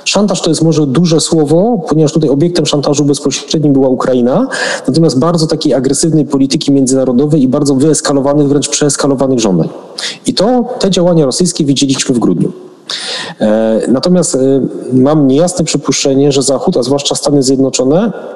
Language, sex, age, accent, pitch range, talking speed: Polish, male, 40-59, native, 135-170 Hz, 145 wpm